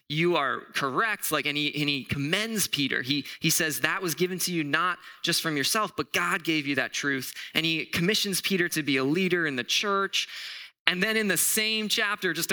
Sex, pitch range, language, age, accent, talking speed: male, 145-195 Hz, English, 20-39, American, 220 wpm